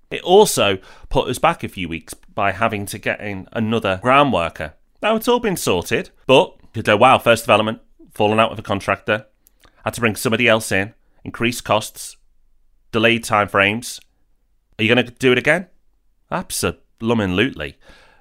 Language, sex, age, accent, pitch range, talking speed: English, male, 30-49, British, 100-135 Hz, 165 wpm